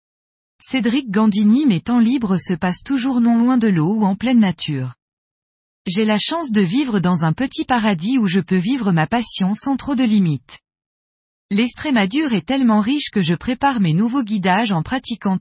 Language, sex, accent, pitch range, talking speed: French, female, French, 185-245 Hz, 185 wpm